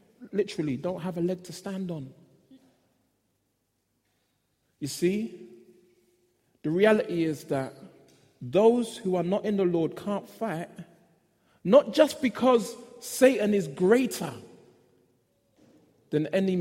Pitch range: 150-195 Hz